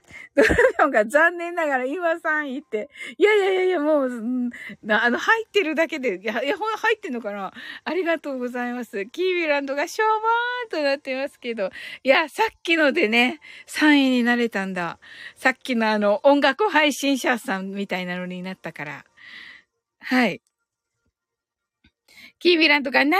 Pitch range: 250-385 Hz